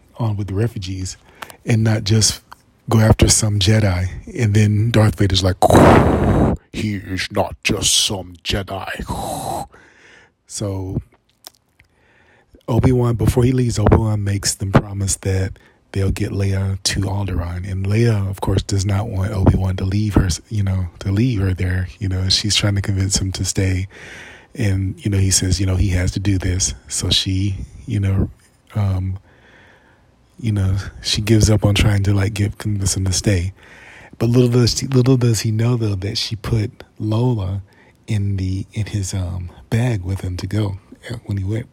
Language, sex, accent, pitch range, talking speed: English, male, American, 95-110 Hz, 170 wpm